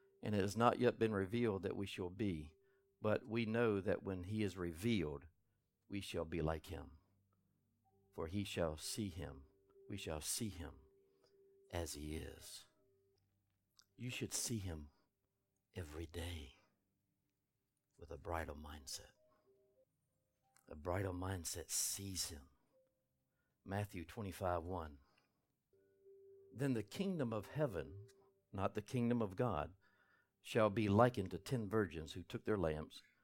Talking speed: 135 wpm